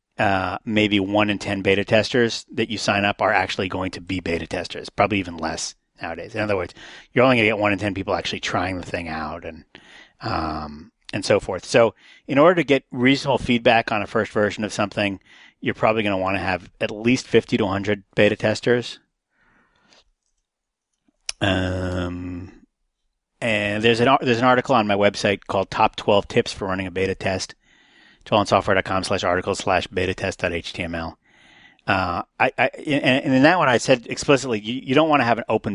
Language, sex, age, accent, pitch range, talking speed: English, male, 40-59, American, 95-115 Hz, 190 wpm